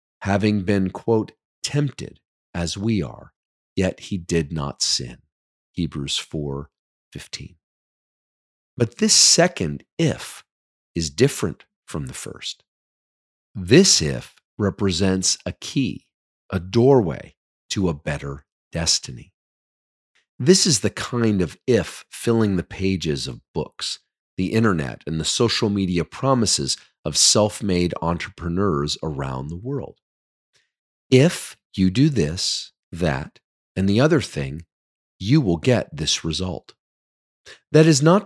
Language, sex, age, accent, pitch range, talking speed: English, male, 40-59, American, 80-120 Hz, 120 wpm